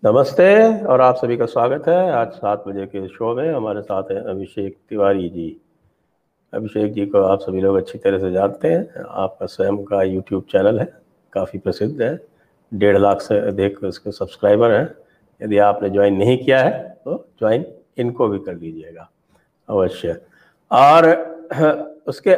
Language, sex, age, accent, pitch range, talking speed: English, male, 50-69, Indian, 100-150 Hz, 160 wpm